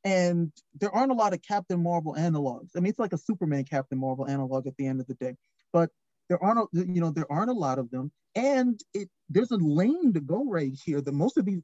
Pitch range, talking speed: 145-205 Hz, 255 wpm